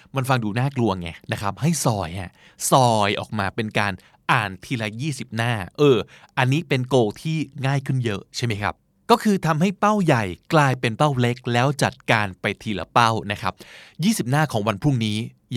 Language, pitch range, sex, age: Thai, 110-150 Hz, male, 20-39